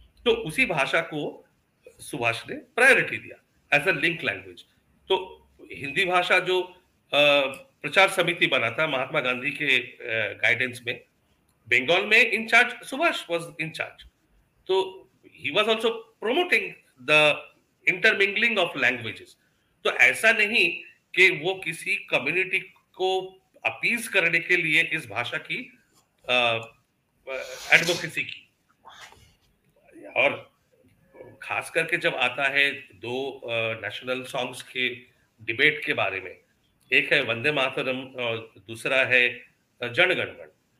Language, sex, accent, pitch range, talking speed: English, male, Indian, 125-190 Hz, 115 wpm